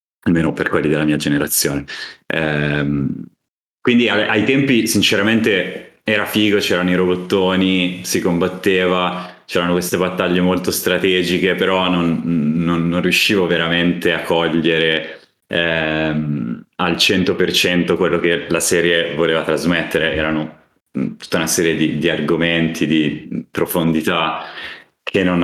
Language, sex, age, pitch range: Italian, male, 30-49, 80-90 Hz